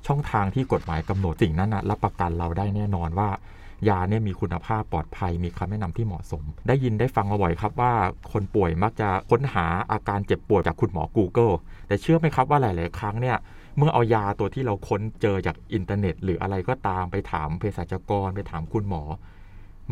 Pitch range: 90-115 Hz